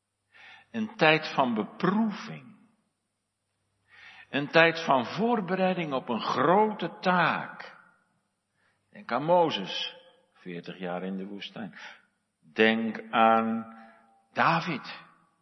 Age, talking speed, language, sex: 60-79, 90 wpm, Dutch, male